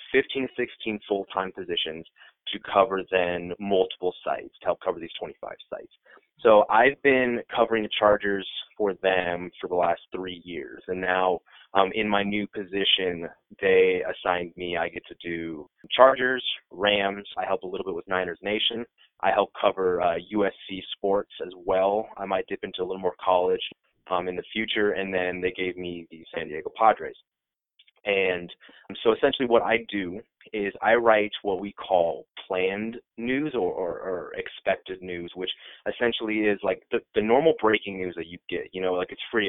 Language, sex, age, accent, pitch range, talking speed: English, male, 20-39, American, 90-115 Hz, 180 wpm